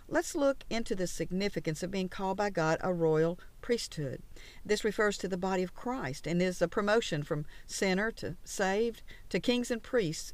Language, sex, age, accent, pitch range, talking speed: English, female, 50-69, American, 165-225 Hz, 185 wpm